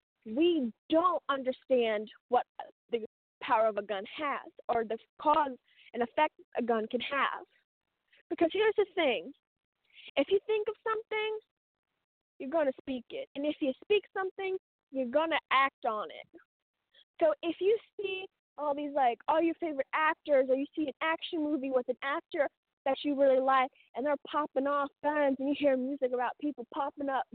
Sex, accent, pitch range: female, American, 265-345 Hz